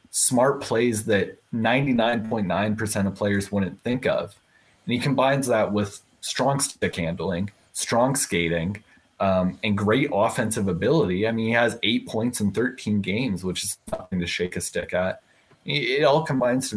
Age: 20-39